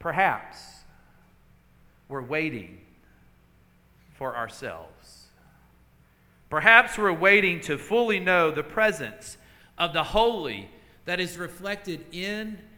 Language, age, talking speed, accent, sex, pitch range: English, 50-69, 95 wpm, American, male, 115-185 Hz